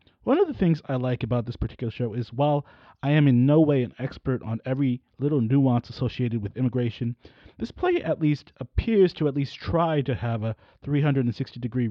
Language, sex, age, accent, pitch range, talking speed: English, male, 30-49, American, 120-160 Hz, 195 wpm